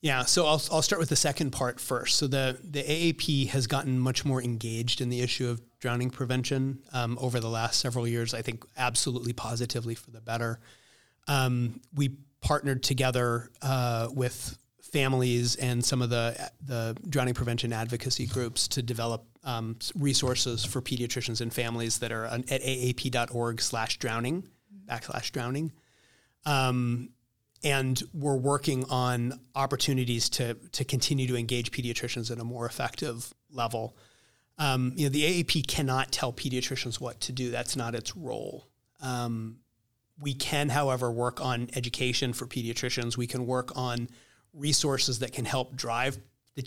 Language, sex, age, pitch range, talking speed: English, male, 30-49, 120-135 Hz, 160 wpm